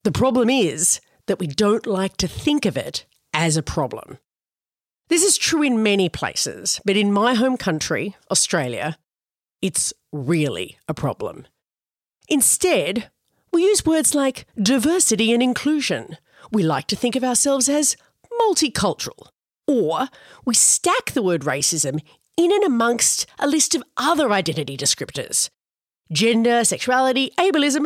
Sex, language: female, English